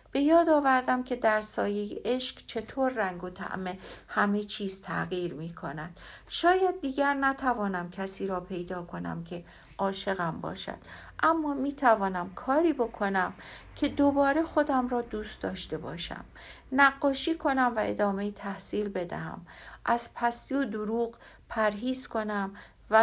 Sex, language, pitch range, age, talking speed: female, Persian, 190-255 Hz, 60-79, 130 wpm